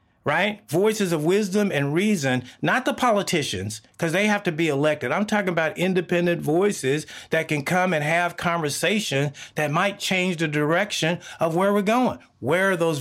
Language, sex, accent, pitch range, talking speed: English, male, American, 130-175 Hz, 175 wpm